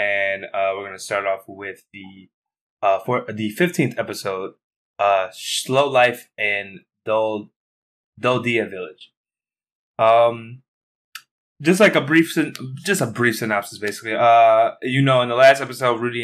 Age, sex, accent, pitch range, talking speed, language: 20-39, male, American, 105-130 Hz, 135 wpm, English